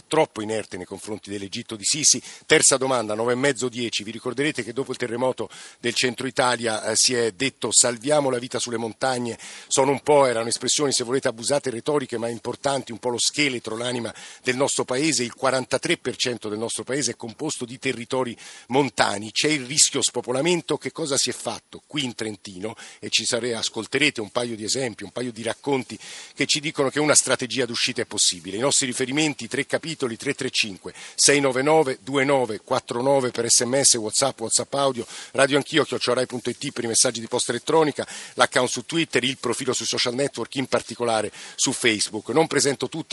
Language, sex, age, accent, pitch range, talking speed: Italian, male, 50-69, native, 115-135 Hz, 175 wpm